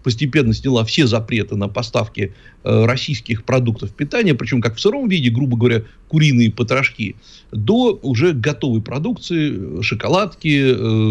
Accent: native